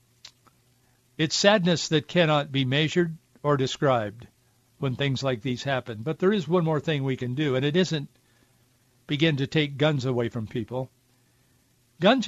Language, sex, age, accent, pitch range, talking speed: English, male, 60-79, American, 125-170 Hz, 160 wpm